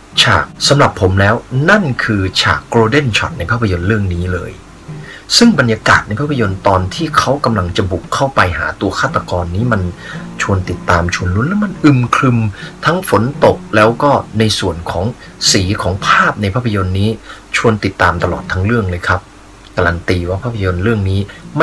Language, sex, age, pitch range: Thai, male, 30-49, 90-120 Hz